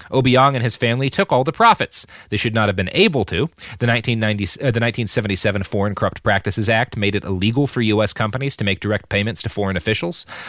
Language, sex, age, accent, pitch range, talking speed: English, male, 30-49, American, 100-140 Hz, 205 wpm